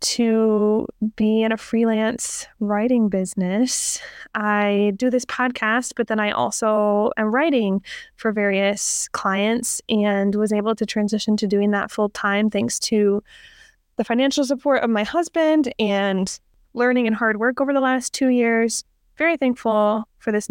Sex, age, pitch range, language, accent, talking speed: female, 20-39, 205-245 Hz, English, American, 150 wpm